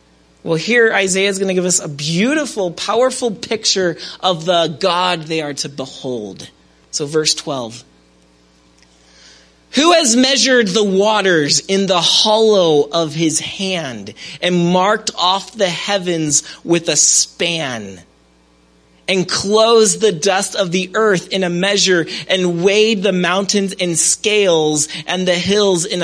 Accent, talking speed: American, 140 wpm